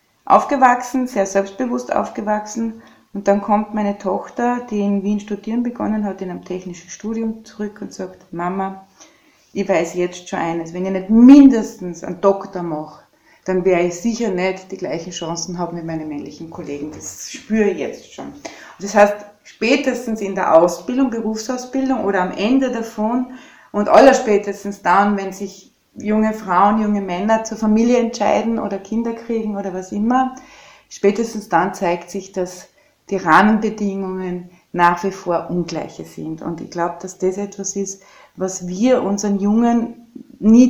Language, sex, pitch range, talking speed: German, female, 180-220 Hz, 160 wpm